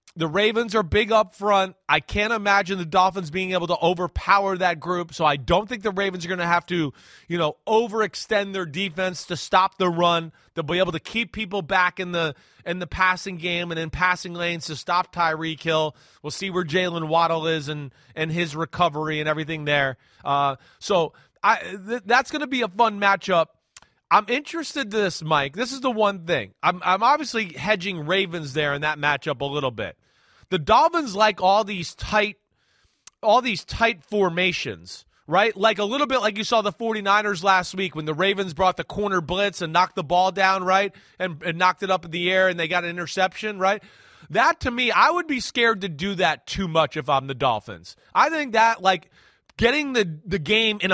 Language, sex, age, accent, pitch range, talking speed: English, male, 30-49, American, 165-210 Hz, 210 wpm